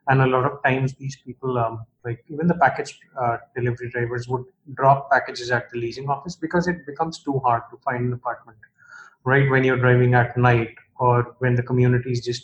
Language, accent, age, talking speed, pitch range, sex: English, Indian, 20-39, 205 wpm, 120-140 Hz, male